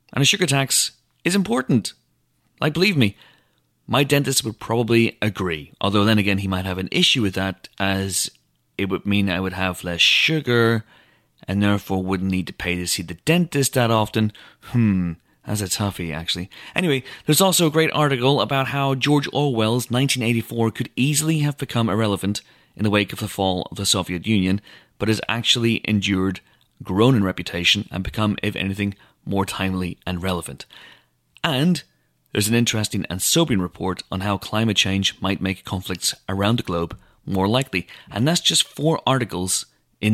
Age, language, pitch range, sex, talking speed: 30-49, English, 95-135 Hz, male, 175 wpm